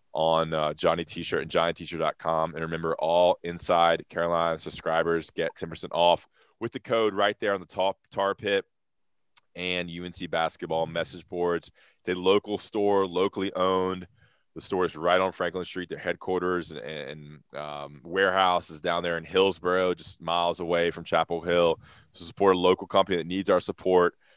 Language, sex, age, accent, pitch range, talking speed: English, male, 20-39, American, 80-95 Hz, 170 wpm